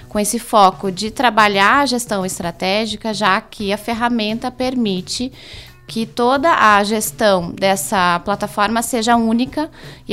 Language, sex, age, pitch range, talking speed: Portuguese, female, 20-39, 190-225 Hz, 130 wpm